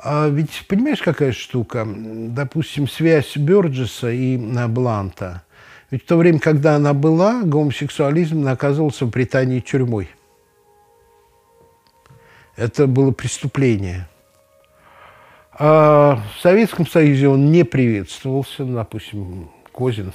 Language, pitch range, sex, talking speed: Russian, 115-155 Hz, male, 100 wpm